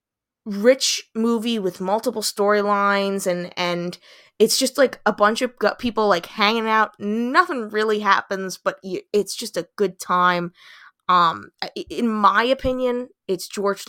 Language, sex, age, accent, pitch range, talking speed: English, female, 20-39, American, 175-220 Hz, 140 wpm